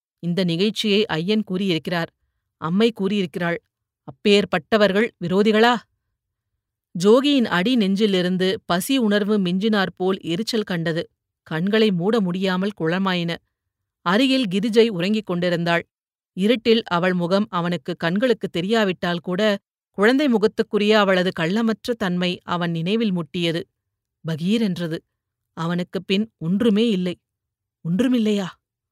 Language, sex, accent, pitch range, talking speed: Tamil, female, native, 175-225 Hz, 95 wpm